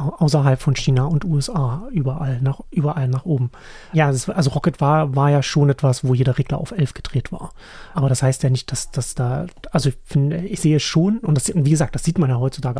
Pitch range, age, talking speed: 130-155 Hz, 30-49, 230 wpm